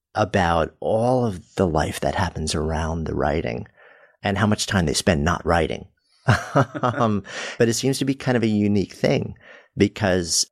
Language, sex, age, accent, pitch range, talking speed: English, male, 50-69, American, 80-105 Hz, 170 wpm